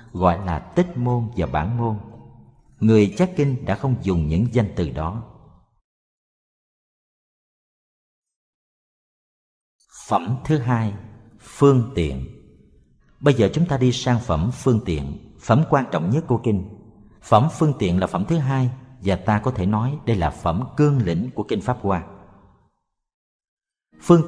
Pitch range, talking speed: 95-135 Hz, 145 wpm